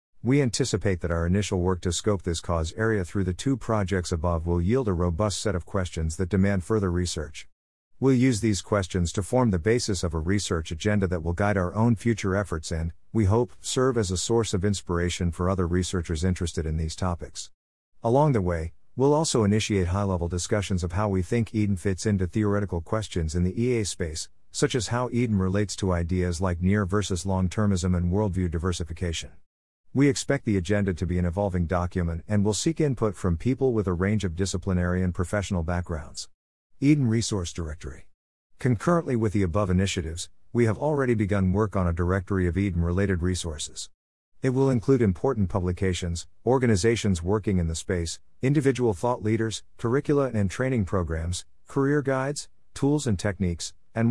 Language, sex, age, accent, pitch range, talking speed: English, male, 50-69, American, 90-110 Hz, 175 wpm